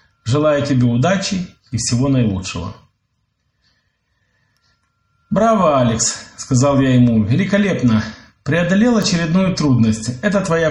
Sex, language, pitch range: male, Polish, 110-160 Hz